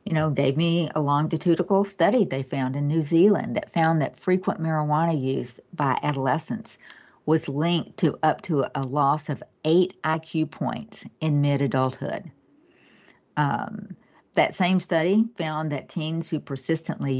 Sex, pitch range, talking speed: female, 145-185 Hz, 145 wpm